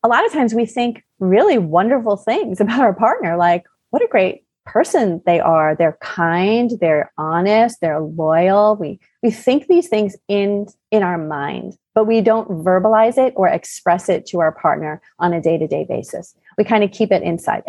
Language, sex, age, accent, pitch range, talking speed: English, female, 30-49, American, 175-220 Hz, 185 wpm